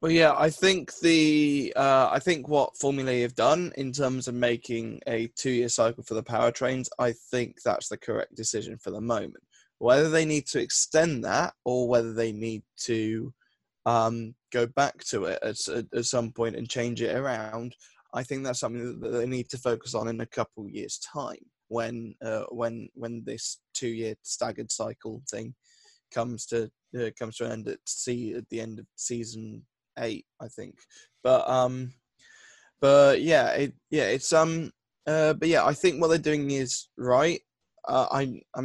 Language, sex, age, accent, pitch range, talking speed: English, male, 20-39, British, 120-140 Hz, 185 wpm